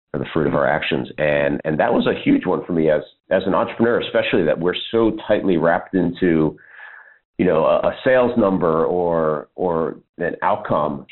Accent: American